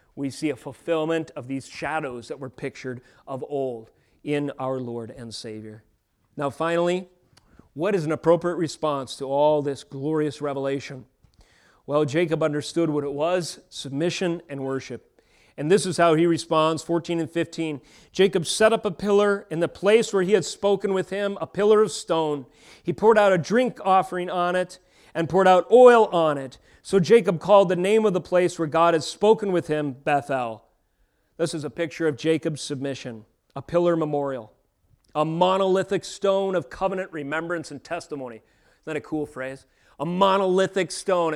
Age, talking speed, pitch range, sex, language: 40-59, 175 wpm, 140-180 Hz, male, English